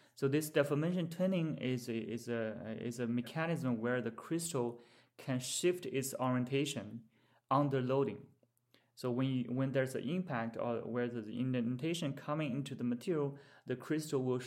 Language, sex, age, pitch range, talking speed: English, male, 30-49, 120-140 Hz, 155 wpm